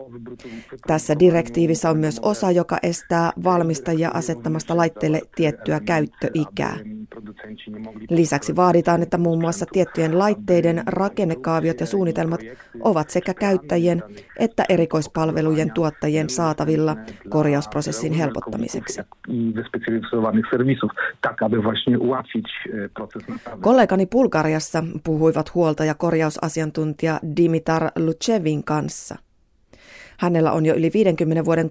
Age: 30-49